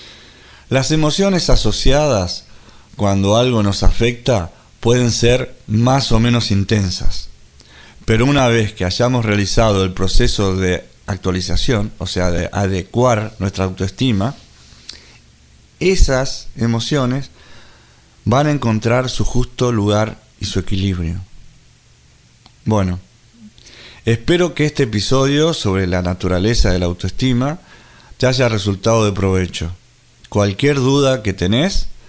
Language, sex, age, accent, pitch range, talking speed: Spanish, male, 40-59, Argentinian, 95-125 Hz, 110 wpm